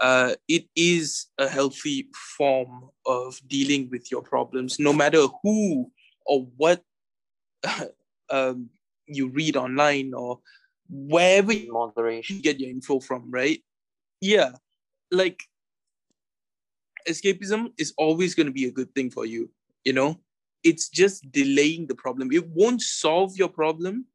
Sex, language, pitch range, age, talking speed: male, English, 140-180 Hz, 20-39, 135 wpm